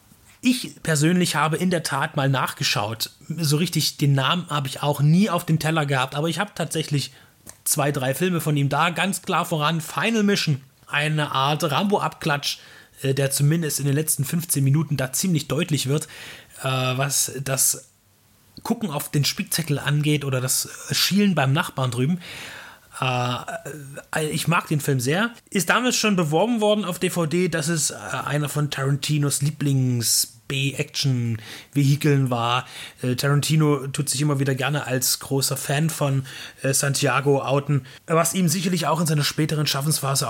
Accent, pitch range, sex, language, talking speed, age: German, 135-165 Hz, male, German, 150 wpm, 30-49